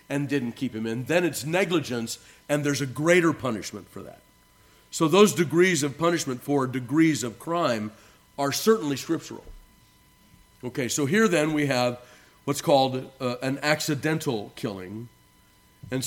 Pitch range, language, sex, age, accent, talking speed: 115-145 Hz, English, male, 40-59, American, 150 wpm